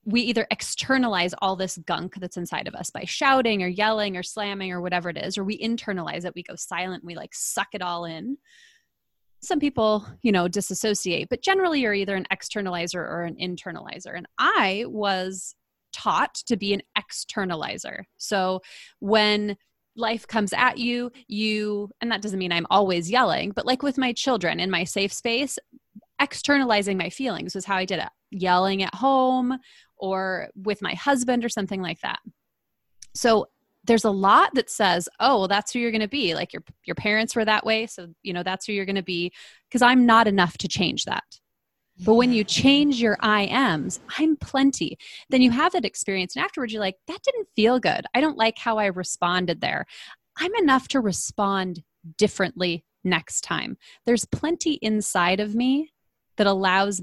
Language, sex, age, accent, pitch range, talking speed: English, female, 20-39, American, 190-245 Hz, 185 wpm